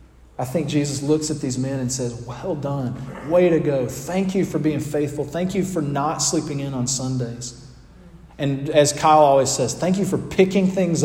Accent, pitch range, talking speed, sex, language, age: American, 125-155 Hz, 200 wpm, male, English, 40-59